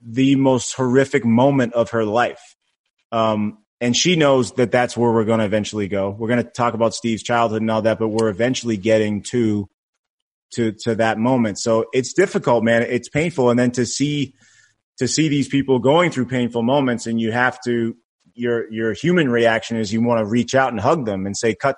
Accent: American